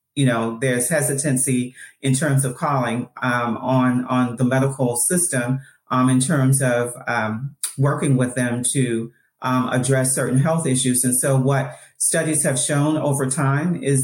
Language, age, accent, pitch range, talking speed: English, 40-59, American, 125-145 Hz, 160 wpm